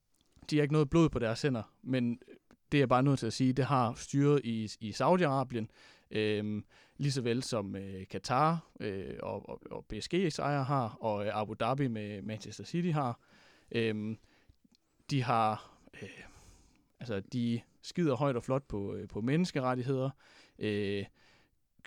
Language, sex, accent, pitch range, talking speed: Danish, male, native, 105-140 Hz, 160 wpm